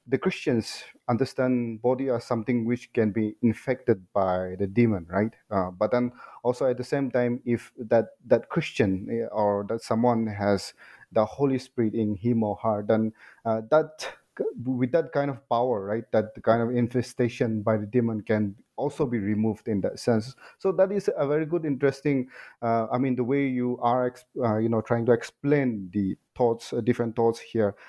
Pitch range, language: 110-130 Hz, English